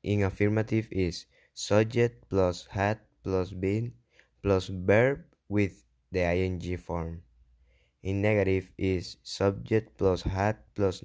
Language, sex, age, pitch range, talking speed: Spanish, male, 20-39, 80-105 Hz, 115 wpm